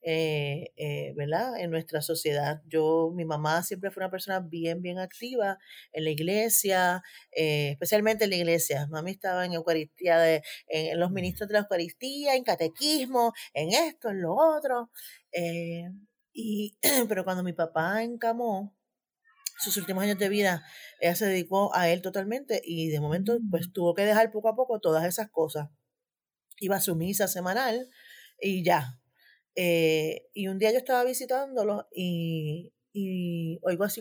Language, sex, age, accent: Spanish, female, 30-49, American